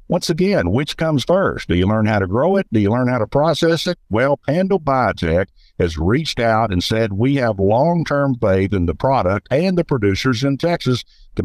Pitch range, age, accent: 105-150 Hz, 60-79, American